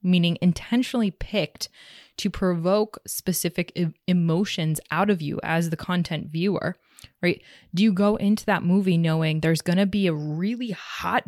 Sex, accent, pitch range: female, American, 165-200 Hz